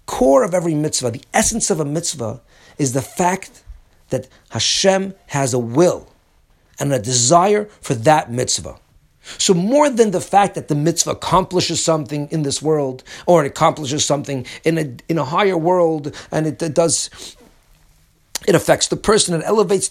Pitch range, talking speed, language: 140-185 Hz, 170 wpm, English